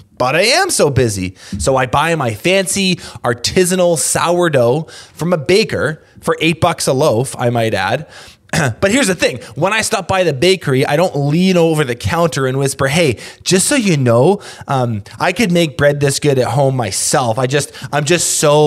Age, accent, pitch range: 20-39, American, 130-185 Hz